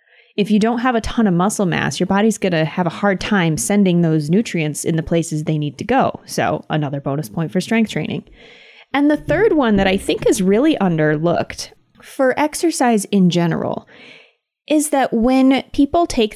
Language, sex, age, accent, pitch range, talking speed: English, female, 20-39, American, 165-215 Hz, 195 wpm